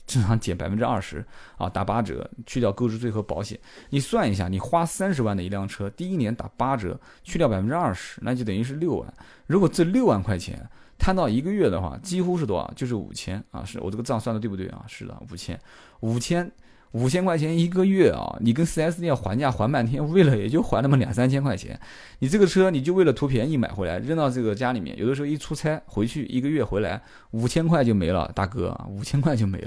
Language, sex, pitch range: Chinese, male, 105-145 Hz